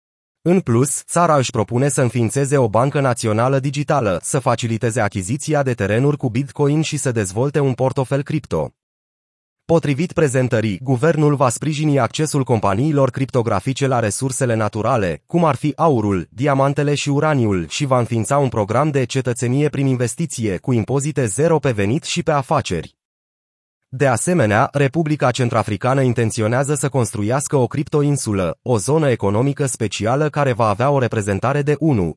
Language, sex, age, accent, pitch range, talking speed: Romanian, male, 30-49, native, 115-145 Hz, 145 wpm